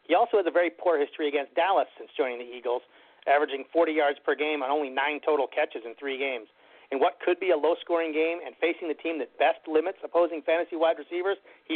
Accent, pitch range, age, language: American, 145-205 Hz, 40-59, English